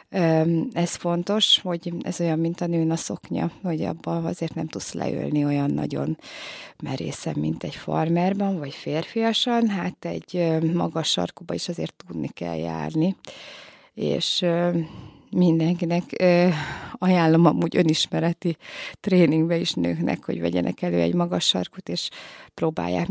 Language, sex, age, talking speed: Hungarian, female, 20-39, 125 wpm